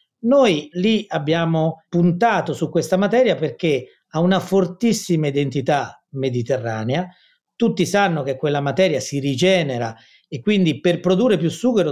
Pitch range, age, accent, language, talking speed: 145-195 Hz, 40-59, native, Italian, 130 wpm